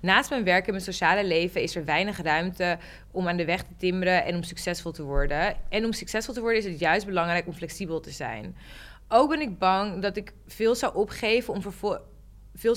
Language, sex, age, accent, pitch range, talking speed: Dutch, female, 20-39, Dutch, 170-225 Hz, 215 wpm